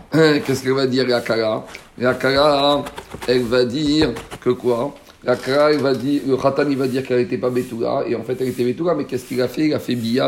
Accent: French